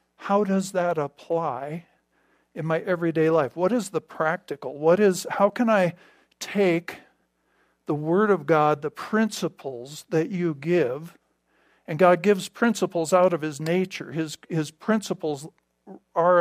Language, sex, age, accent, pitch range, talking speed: English, male, 50-69, American, 160-190 Hz, 145 wpm